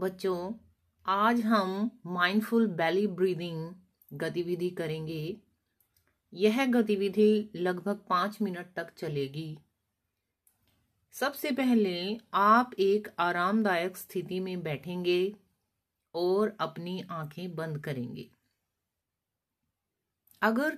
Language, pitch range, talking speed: Hindi, 155-210 Hz, 85 wpm